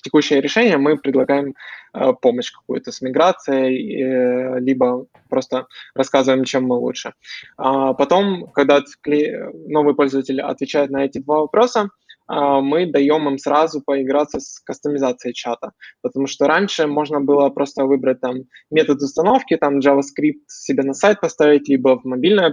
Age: 20-39